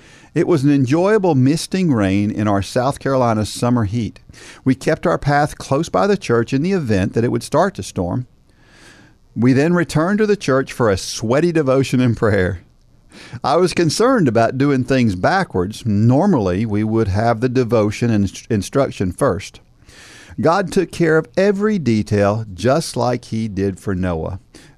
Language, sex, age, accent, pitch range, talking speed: English, male, 50-69, American, 110-160 Hz, 165 wpm